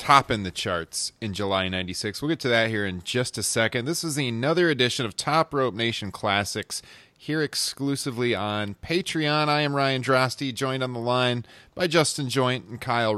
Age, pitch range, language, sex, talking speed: 30-49, 105-135 Hz, English, male, 185 wpm